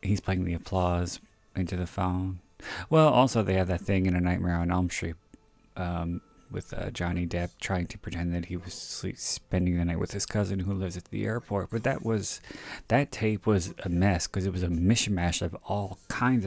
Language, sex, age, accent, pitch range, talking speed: English, male, 30-49, American, 90-105 Hz, 210 wpm